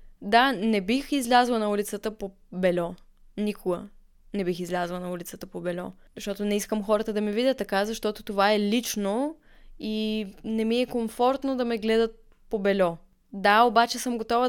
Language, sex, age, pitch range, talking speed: Bulgarian, female, 20-39, 205-245 Hz, 175 wpm